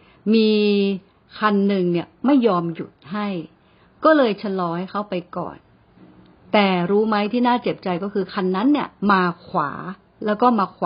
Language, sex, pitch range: Thai, female, 175-230 Hz